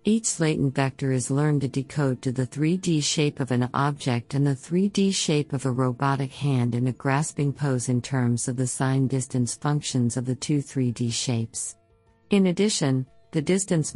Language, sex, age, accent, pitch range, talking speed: English, female, 50-69, American, 130-150 Hz, 180 wpm